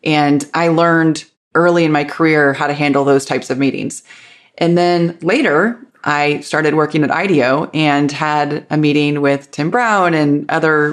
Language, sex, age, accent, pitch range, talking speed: English, female, 20-39, American, 145-175 Hz, 170 wpm